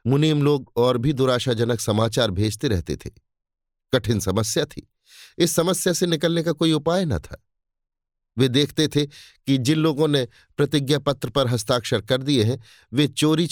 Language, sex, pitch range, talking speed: Hindi, male, 105-145 Hz, 165 wpm